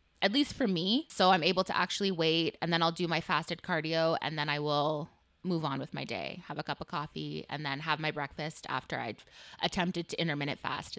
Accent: American